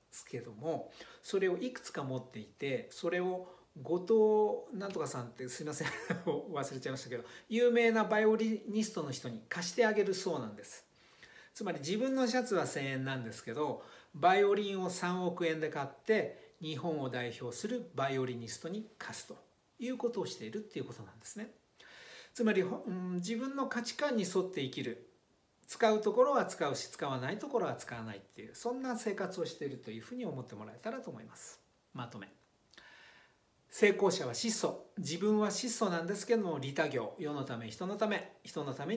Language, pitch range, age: Japanese, 140-220 Hz, 60-79